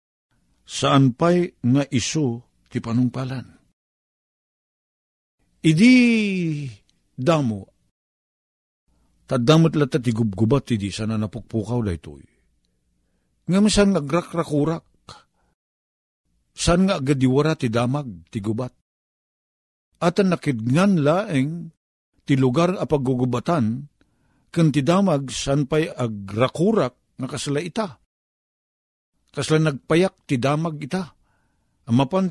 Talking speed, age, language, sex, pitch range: 85 wpm, 50-69, Filipino, male, 115-165 Hz